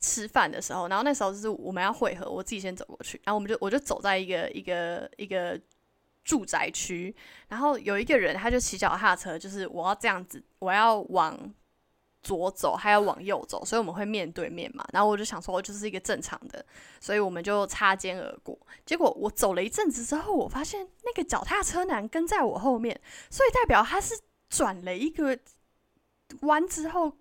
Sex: female